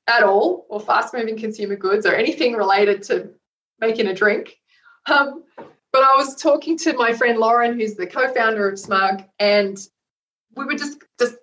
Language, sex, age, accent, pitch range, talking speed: English, female, 30-49, Australian, 205-280 Hz, 170 wpm